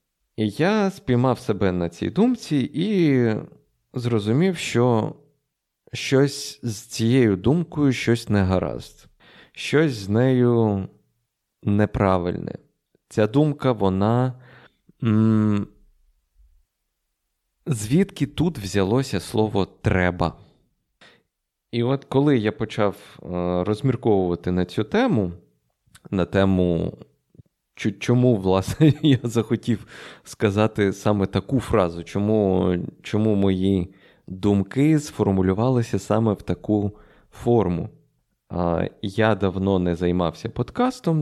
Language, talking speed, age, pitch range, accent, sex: Ukrainian, 90 wpm, 30-49, 95-130 Hz, native, male